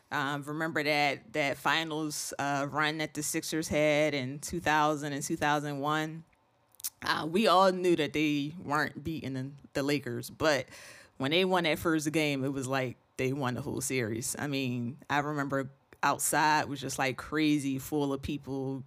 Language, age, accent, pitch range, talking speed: English, 20-39, American, 135-150 Hz, 170 wpm